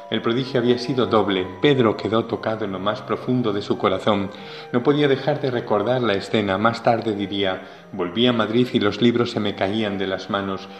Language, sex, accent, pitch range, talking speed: Spanish, male, Spanish, 105-135 Hz, 205 wpm